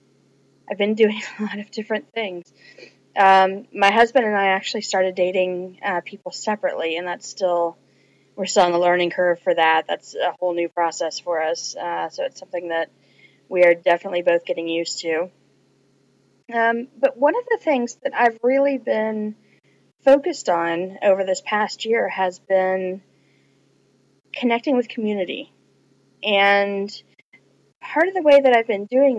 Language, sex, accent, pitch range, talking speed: English, female, American, 170-205 Hz, 160 wpm